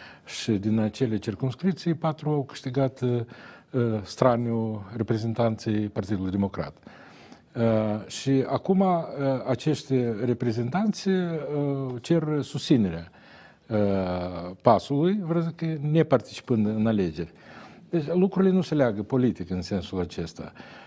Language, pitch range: Romanian, 105-135 Hz